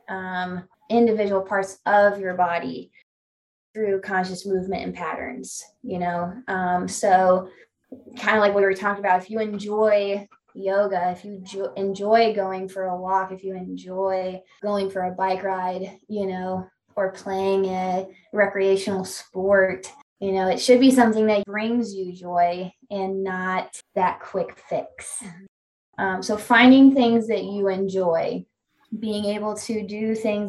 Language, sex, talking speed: English, female, 150 wpm